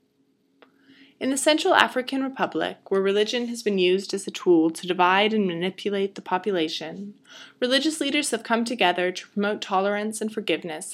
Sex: female